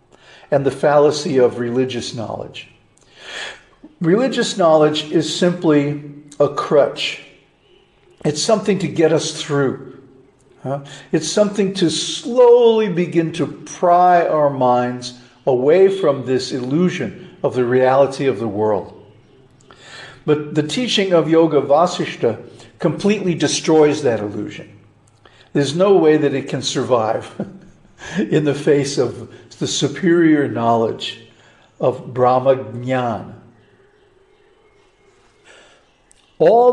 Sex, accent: male, American